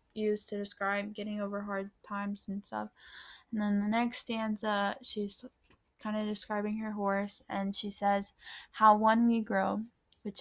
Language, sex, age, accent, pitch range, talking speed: English, female, 10-29, American, 200-215 Hz, 160 wpm